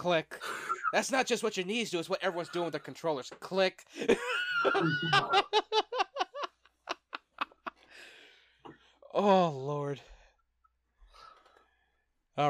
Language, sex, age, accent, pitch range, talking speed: English, male, 20-39, American, 115-175 Hz, 90 wpm